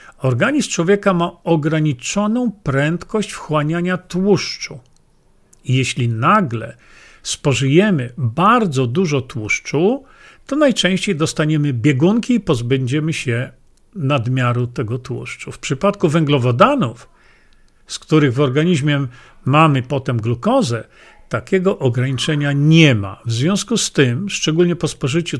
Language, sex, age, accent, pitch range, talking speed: Polish, male, 50-69, native, 135-180 Hz, 105 wpm